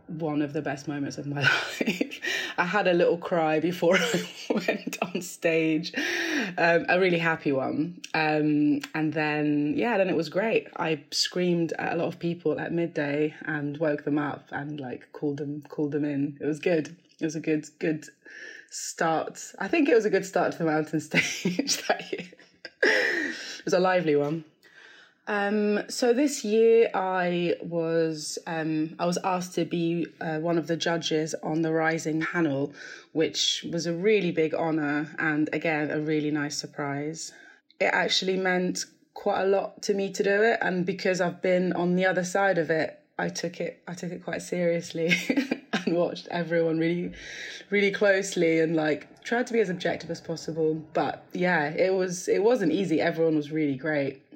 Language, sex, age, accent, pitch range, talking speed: English, female, 20-39, British, 155-185 Hz, 185 wpm